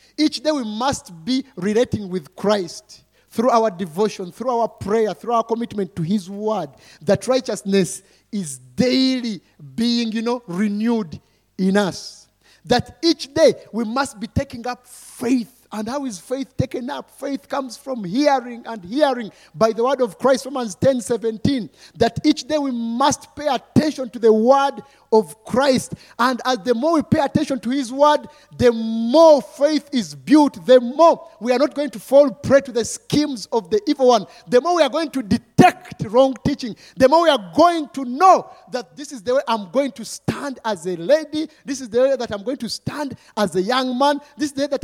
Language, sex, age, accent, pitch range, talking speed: English, male, 50-69, South African, 215-280 Hz, 195 wpm